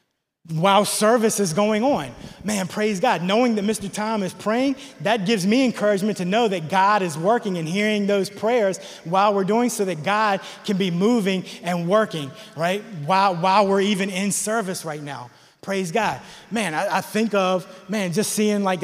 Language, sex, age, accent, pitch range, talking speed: English, male, 20-39, American, 190-220 Hz, 190 wpm